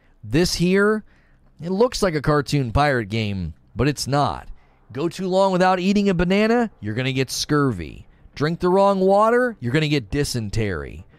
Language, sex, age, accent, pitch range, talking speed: English, male, 30-49, American, 120-195 Hz, 165 wpm